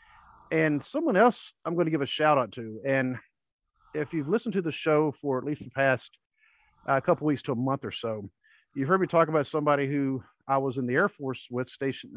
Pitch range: 130-180 Hz